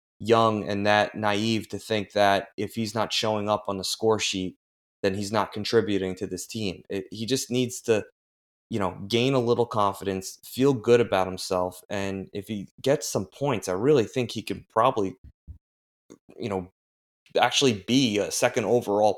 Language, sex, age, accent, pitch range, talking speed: English, male, 20-39, American, 100-120 Hz, 175 wpm